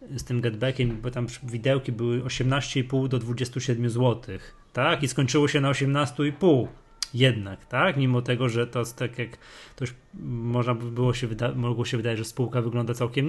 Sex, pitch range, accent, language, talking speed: male, 120-145 Hz, native, Polish, 180 wpm